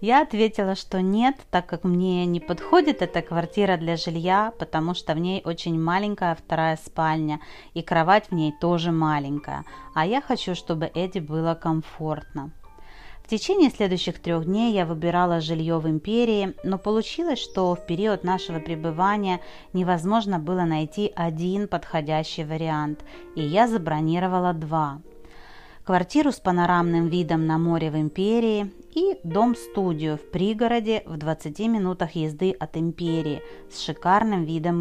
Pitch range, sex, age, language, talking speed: 160-195 Hz, female, 30-49, Russian, 140 wpm